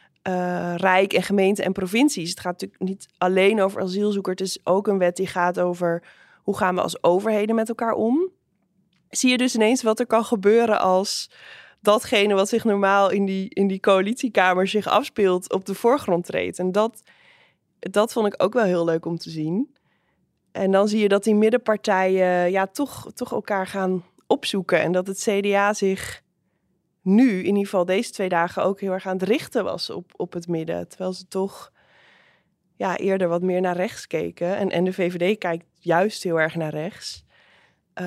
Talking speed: 190 wpm